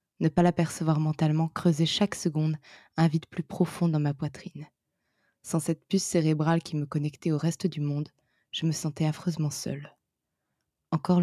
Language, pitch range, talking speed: French, 150-170 Hz, 165 wpm